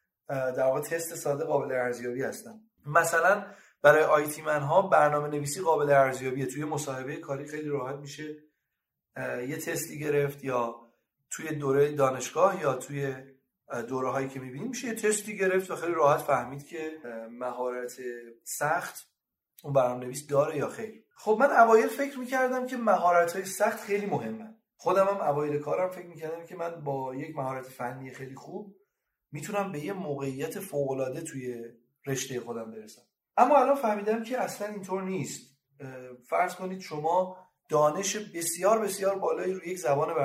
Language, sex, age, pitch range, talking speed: Persian, male, 30-49, 135-185 Hz, 150 wpm